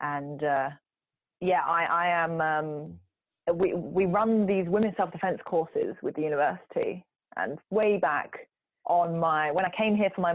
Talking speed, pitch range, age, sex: 160 wpm, 175-275 Hz, 20-39, female